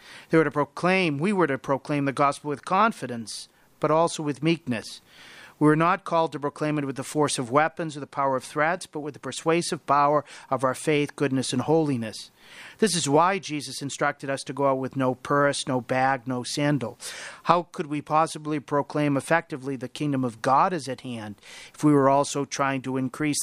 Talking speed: 205 wpm